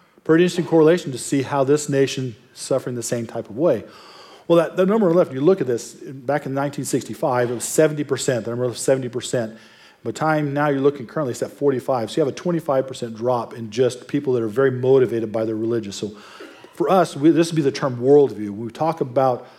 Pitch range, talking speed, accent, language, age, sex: 115-145 Hz, 220 wpm, American, English, 40-59, male